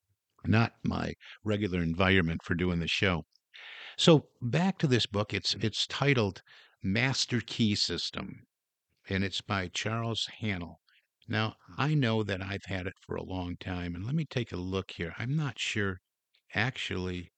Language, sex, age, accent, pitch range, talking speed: English, male, 50-69, American, 90-110 Hz, 160 wpm